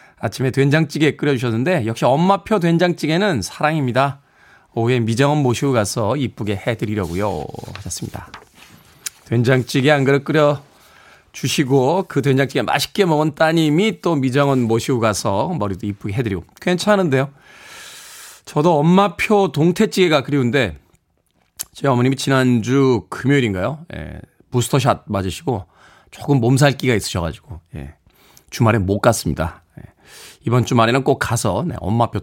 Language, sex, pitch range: Korean, male, 115-170 Hz